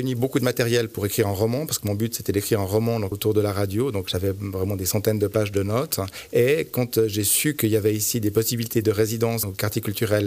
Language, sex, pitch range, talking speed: French, male, 100-115 Hz, 265 wpm